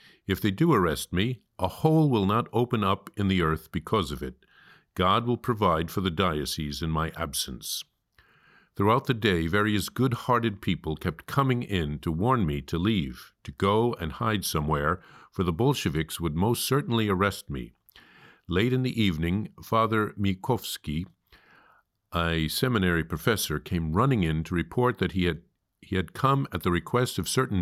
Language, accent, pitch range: English, American, 80-110 Hz